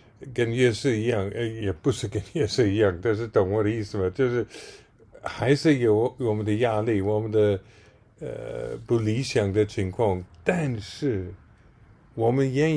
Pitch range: 105-135 Hz